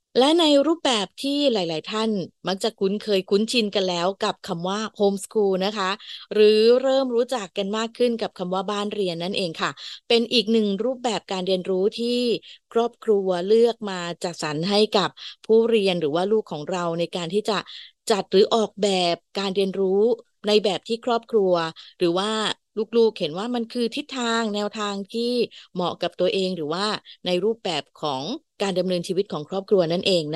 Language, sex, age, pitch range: Thai, female, 20-39, 180-225 Hz